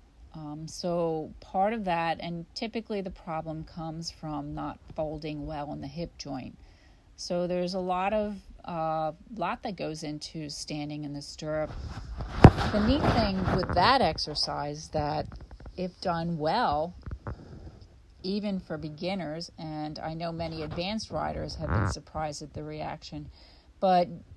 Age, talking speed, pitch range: 40-59, 145 wpm, 145-175 Hz